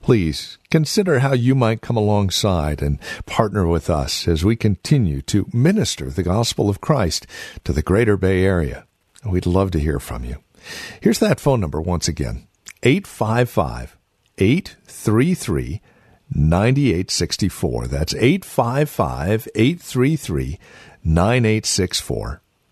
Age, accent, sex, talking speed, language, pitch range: 50-69, American, male, 105 wpm, English, 95-145 Hz